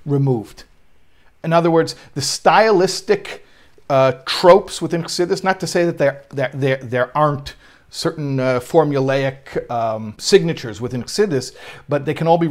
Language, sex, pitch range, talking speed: English, male, 125-160 Hz, 150 wpm